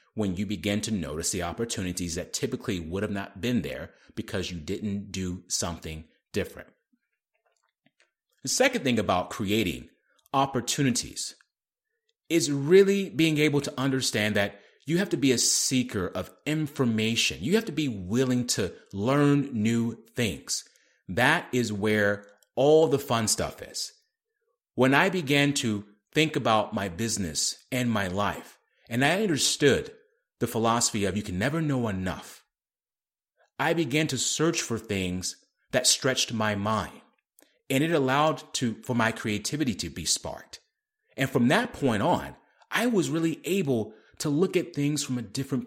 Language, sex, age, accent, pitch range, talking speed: English, male, 30-49, American, 105-155 Hz, 150 wpm